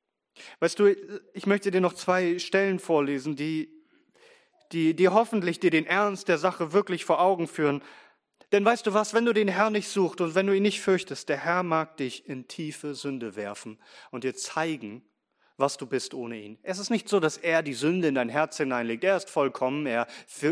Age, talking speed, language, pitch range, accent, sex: 30-49, 210 wpm, German, 130-190 Hz, German, male